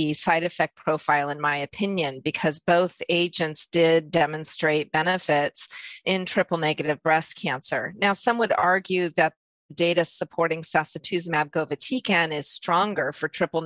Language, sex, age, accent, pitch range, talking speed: English, female, 40-59, American, 150-180 Hz, 130 wpm